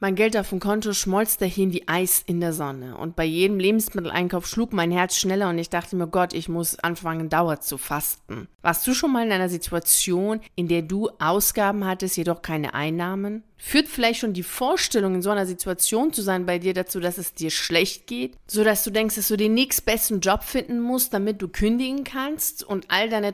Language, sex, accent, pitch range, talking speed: German, female, German, 170-215 Hz, 210 wpm